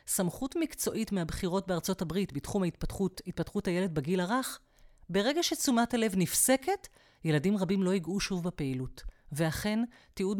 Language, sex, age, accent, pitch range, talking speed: Hebrew, female, 40-59, native, 160-225 Hz, 135 wpm